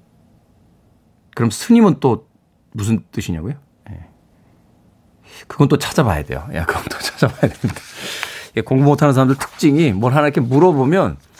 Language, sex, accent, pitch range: Korean, male, native, 110-145 Hz